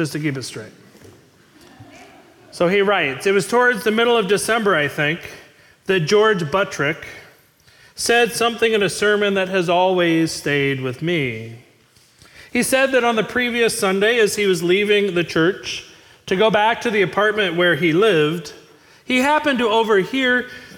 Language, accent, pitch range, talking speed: English, American, 175-230 Hz, 165 wpm